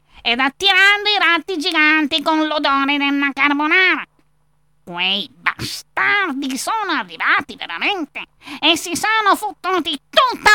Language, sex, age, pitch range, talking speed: Italian, female, 30-49, 245-330 Hz, 110 wpm